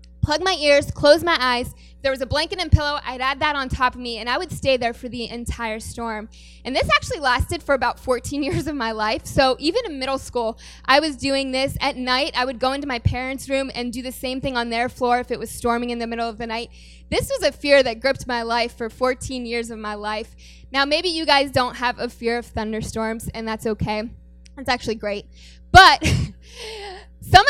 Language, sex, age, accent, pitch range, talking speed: English, female, 10-29, American, 230-280 Hz, 235 wpm